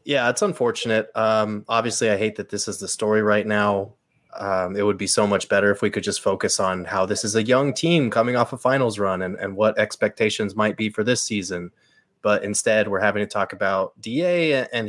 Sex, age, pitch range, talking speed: male, 20-39, 100-115 Hz, 225 wpm